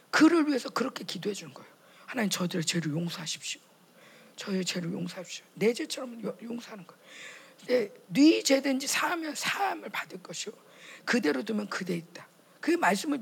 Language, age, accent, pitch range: Korean, 40-59, native, 170-265 Hz